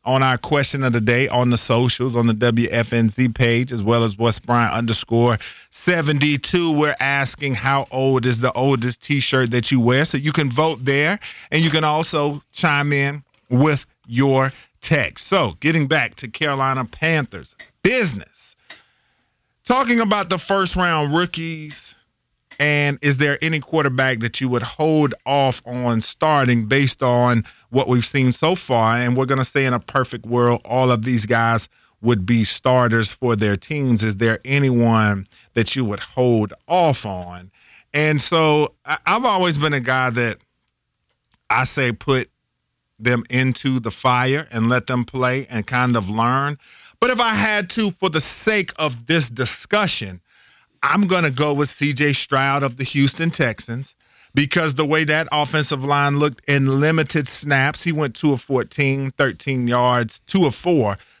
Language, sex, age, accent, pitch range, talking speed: English, male, 40-59, American, 120-150 Hz, 165 wpm